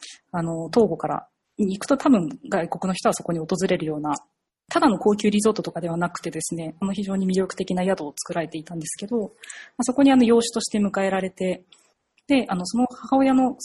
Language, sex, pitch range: Japanese, female, 170-240 Hz